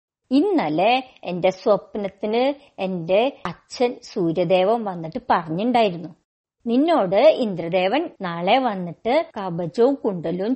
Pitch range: 185-285 Hz